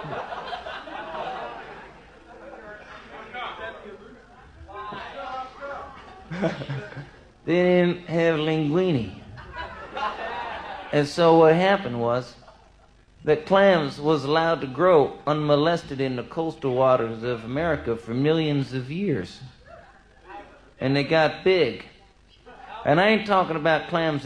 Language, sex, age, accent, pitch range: English, male, 50-69, American, 130-180 Hz